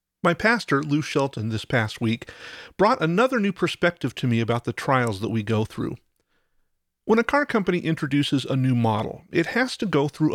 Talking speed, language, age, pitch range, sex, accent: 190 wpm, English, 40-59, 125-170 Hz, male, American